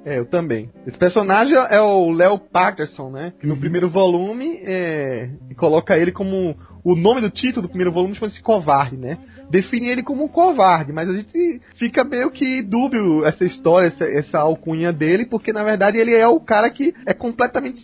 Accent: Brazilian